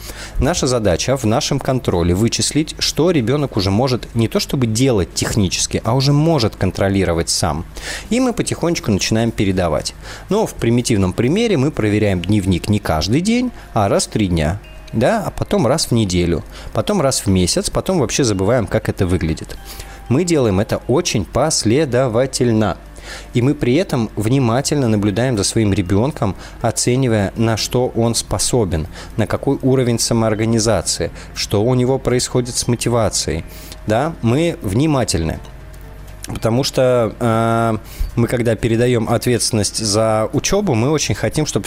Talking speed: 145 wpm